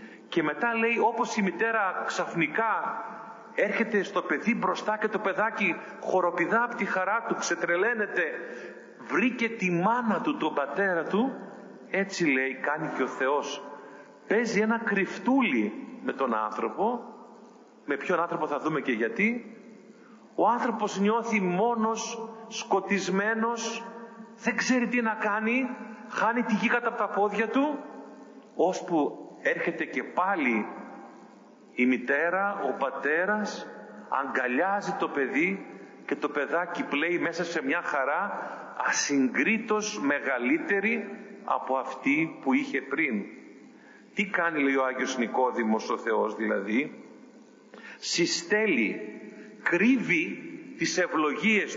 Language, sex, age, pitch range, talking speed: Greek, male, 40-59, 180-230 Hz, 120 wpm